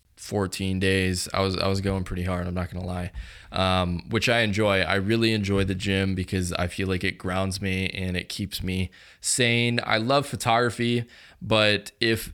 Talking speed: 190 wpm